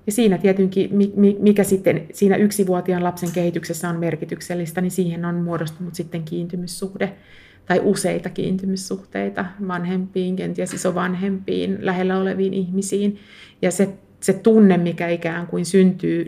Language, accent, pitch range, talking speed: Finnish, native, 170-195 Hz, 115 wpm